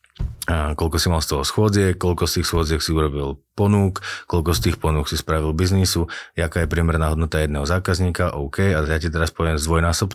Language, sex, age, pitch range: Slovak, male, 30-49, 80-90 Hz